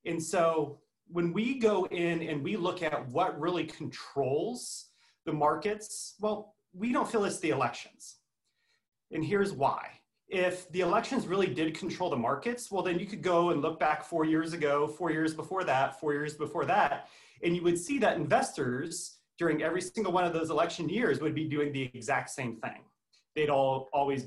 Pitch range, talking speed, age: 145-185 Hz, 190 wpm, 30-49